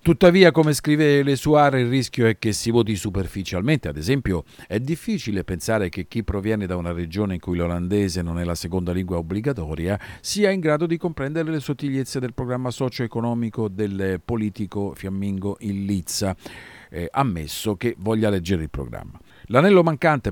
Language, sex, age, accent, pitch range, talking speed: Italian, male, 50-69, native, 90-135 Hz, 165 wpm